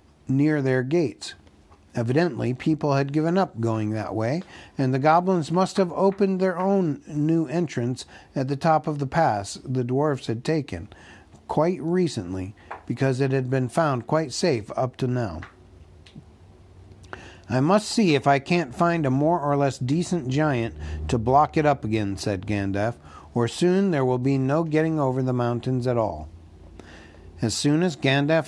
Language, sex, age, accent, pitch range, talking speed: English, male, 60-79, American, 115-160 Hz, 165 wpm